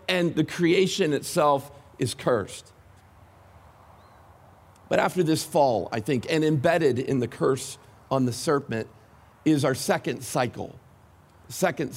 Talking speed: 125 wpm